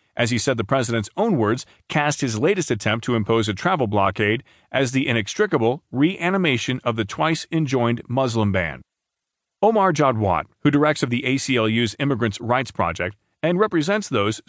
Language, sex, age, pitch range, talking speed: English, male, 40-59, 110-150 Hz, 155 wpm